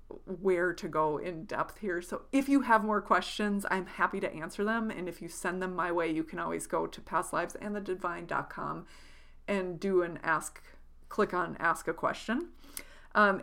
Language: English